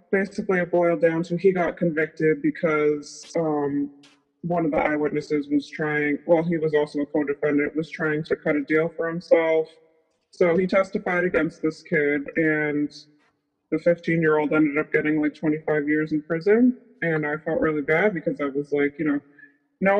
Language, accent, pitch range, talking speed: English, American, 150-180 Hz, 175 wpm